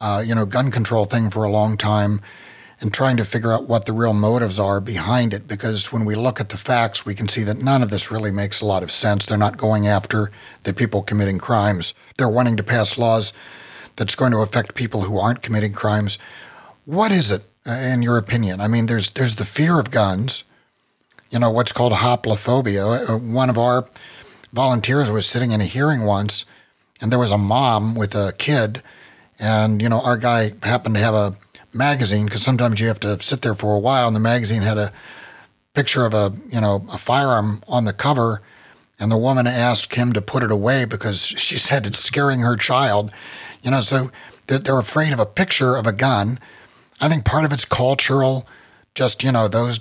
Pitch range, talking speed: 105-125 Hz, 210 wpm